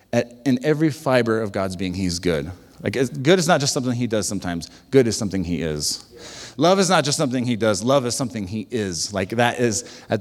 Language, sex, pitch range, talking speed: English, male, 95-125 Hz, 225 wpm